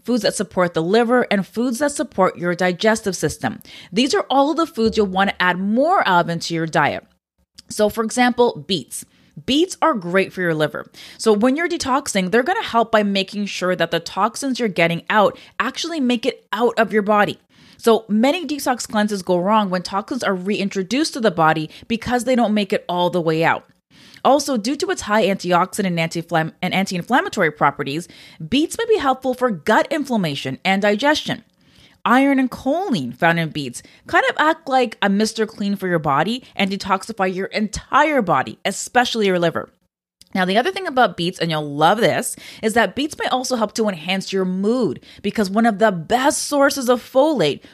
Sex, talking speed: female, 190 wpm